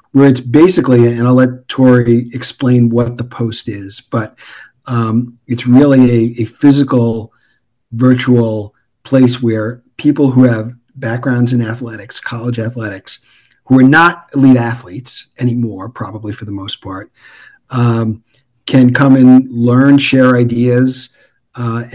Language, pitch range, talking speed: English, 115-130 Hz, 135 wpm